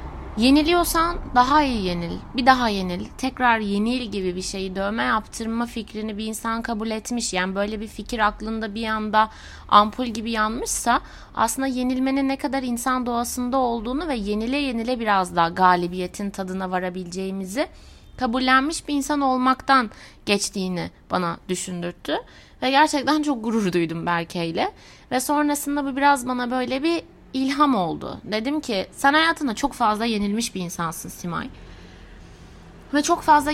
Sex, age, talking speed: female, 30-49, 140 wpm